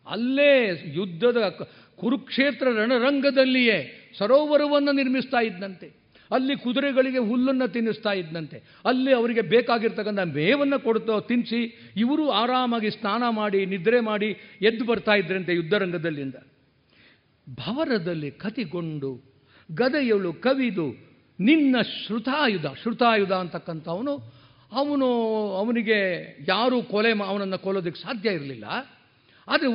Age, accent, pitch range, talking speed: 50-69, native, 190-255 Hz, 90 wpm